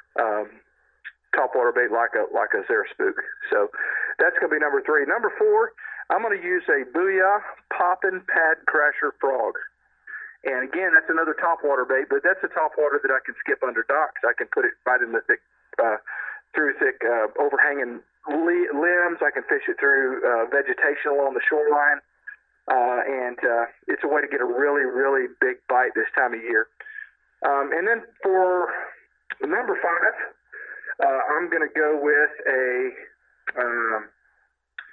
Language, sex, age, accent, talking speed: English, male, 40-59, American, 165 wpm